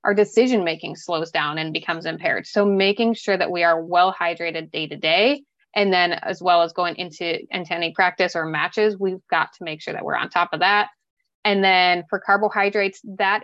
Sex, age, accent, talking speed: female, 20-39, American, 210 wpm